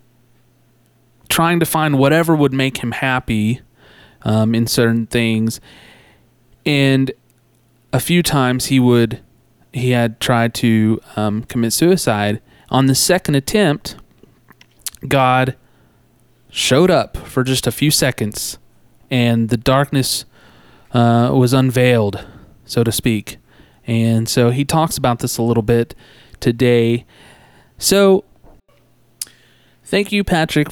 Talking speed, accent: 115 wpm, American